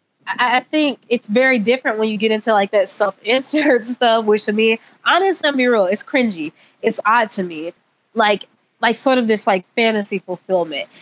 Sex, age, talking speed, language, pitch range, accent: female, 20-39, 190 wpm, English, 205-255 Hz, American